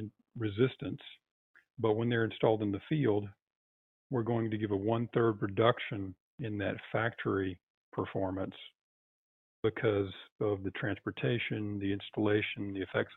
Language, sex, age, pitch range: English, male, 50-69, 100-115 Hz